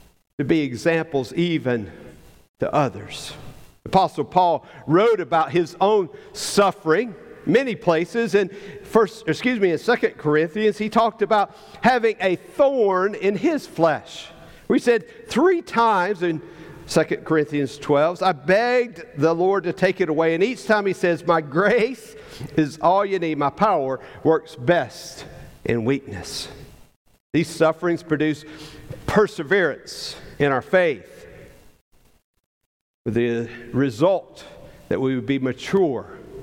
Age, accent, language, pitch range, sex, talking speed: 50-69, American, English, 135-190 Hz, male, 130 wpm